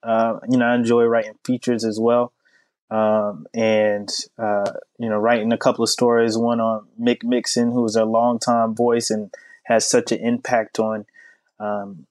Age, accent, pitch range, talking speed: 20-39, American, 110-120 Hz, 175 wpm